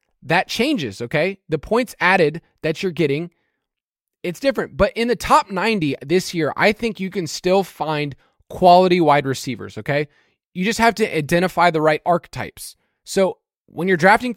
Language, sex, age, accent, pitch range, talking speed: English, male, 20-39, American, 145-195 Hz, 165 wpm